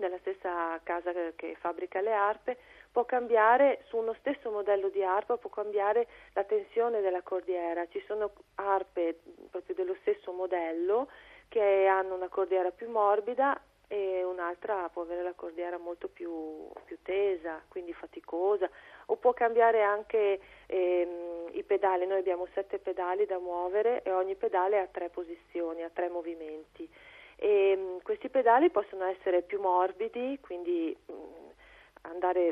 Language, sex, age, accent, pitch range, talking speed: Italian, female, 40-59, native, 180-225 Hz, 145 wpm